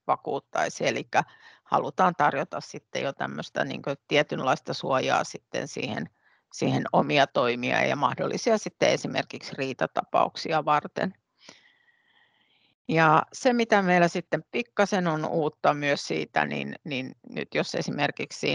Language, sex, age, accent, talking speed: Finnish, female, 50-69, native, 115 wpm